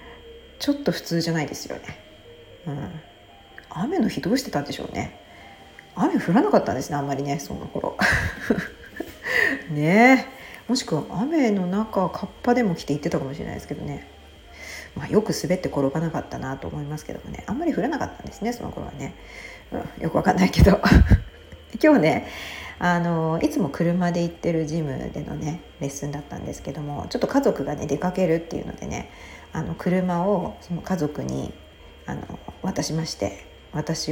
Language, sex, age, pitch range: Japanese, female, 40-59, 140-220 Hz